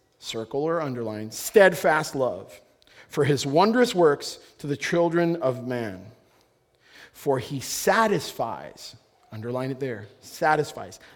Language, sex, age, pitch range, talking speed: English, male, 30-49, 125-185 Hz, 115 wpm